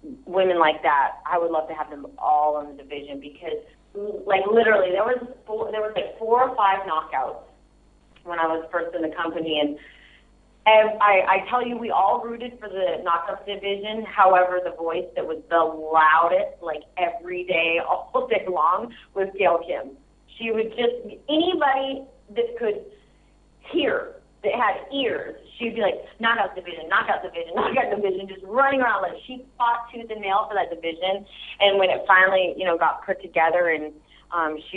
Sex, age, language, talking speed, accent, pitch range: female, 30-49, English, 185 wpm, American, 160-215 Hz